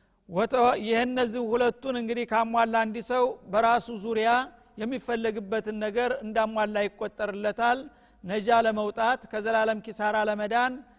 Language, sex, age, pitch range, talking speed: Amharic, male, 50-69, 215-240 Hz, 95 wpm